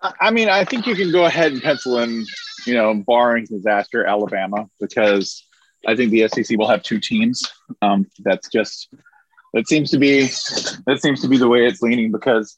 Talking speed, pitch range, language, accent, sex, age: 195 wpm, 110-150 Hz, English, American, male, 30-49